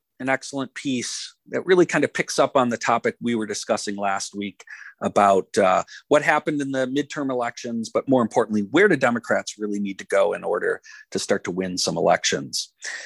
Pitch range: 110-160 Hz